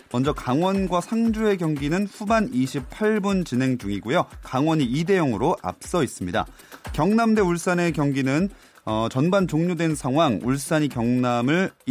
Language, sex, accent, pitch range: Korean, male, native, 135-195 Hz